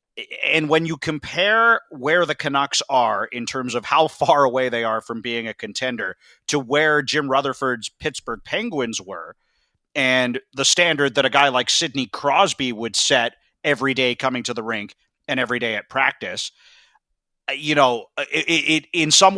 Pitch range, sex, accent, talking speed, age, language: 120-155 Hz, male, American, 165 wpm, 30-49, English